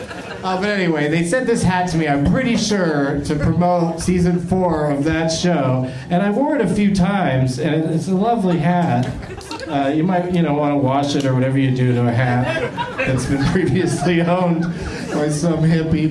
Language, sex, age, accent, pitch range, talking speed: English, male, 40-59, American, 145-185 Hz, 205 wpm